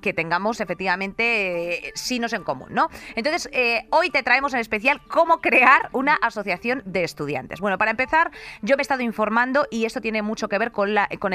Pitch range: 185-245 Hz